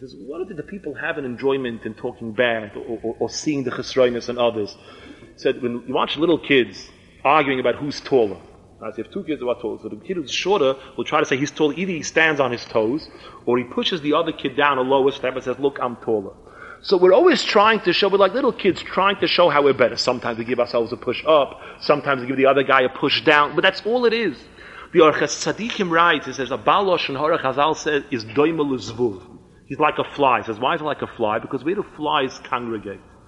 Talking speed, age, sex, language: 250 wpm, 30-49, male, English